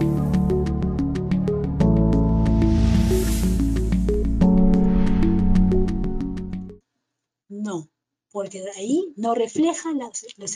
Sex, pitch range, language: female, 200-280 Hz, Portuguese